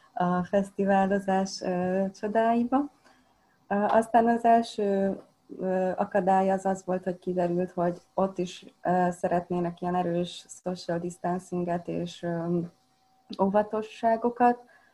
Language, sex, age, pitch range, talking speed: Hungarian, female, 30-49, 175-225 Hz, 90 wpm